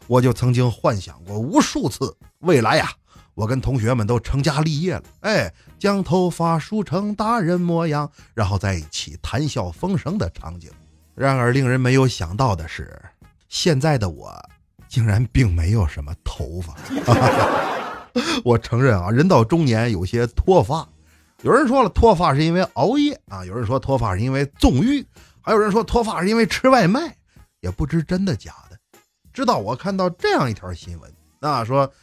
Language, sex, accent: Chinese, male, native